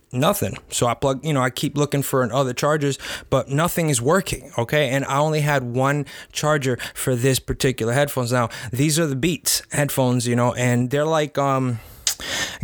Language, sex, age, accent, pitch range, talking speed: English, male, 20-39, American, 125-150 Hz, 190 wpm